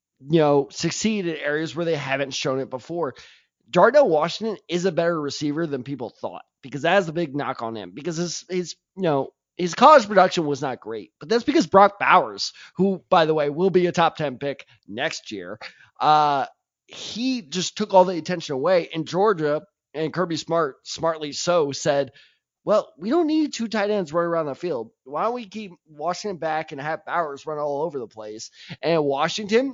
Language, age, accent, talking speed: English, 20-39, American, 200 wpm